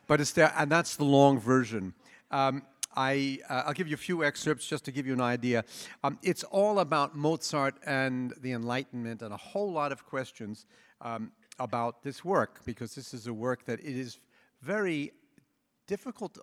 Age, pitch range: 50-69, 120-155 Hz